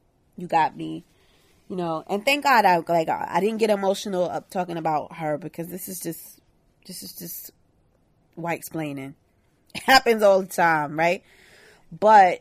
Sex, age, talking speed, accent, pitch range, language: female, 20-39, 165 wpm, American, 155-195 Hz, English